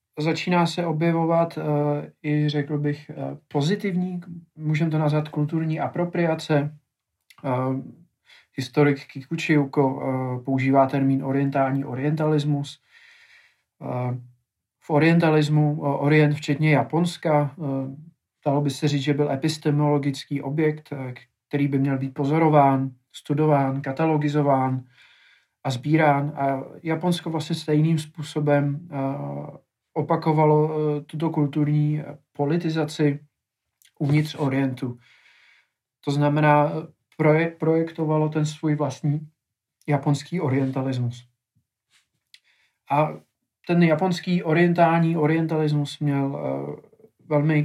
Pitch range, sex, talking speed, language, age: 135-155 Hz, male, 85 wpm, Czech, 40-59